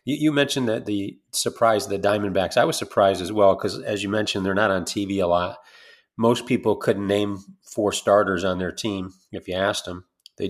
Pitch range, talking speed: 90-105 Hz, 210 wpm